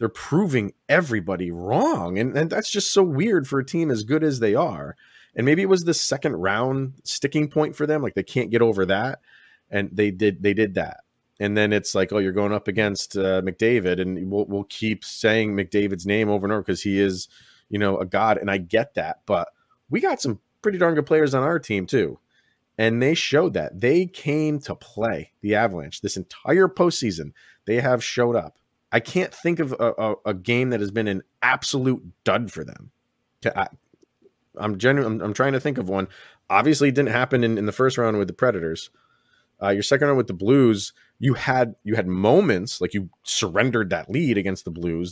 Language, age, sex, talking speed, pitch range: English, 30-49, male, 215 wpm, 100-145 Hz